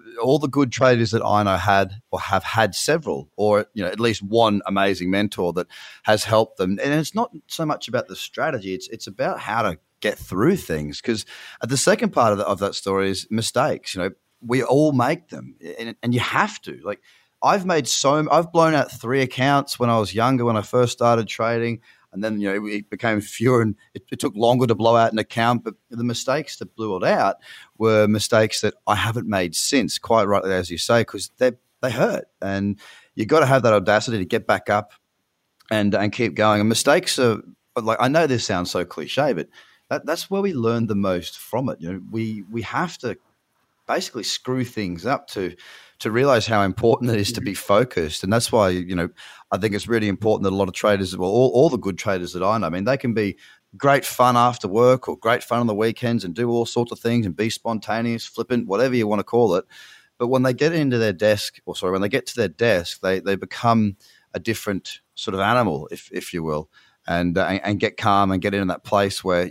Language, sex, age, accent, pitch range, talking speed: English, male, 30-49, Australian, 100-120 Hz, 230 wpm